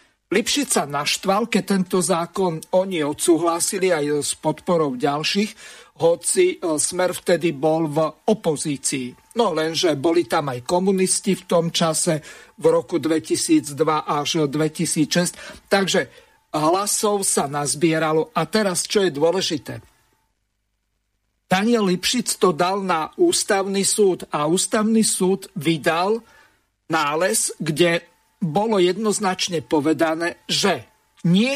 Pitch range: 155-205 Hz